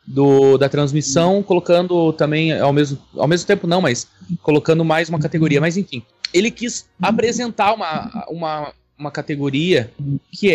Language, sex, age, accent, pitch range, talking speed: Portuguese, male, 20-39, Brazilian, 140-200 Hz, 135 wpm